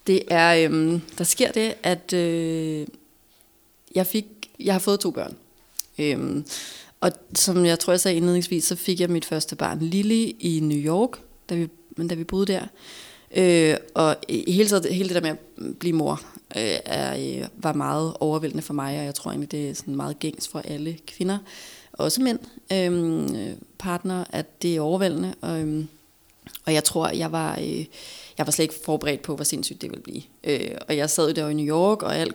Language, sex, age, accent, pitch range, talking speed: Danish, female, 30-49, native, 155-185 Hz, 195 wpm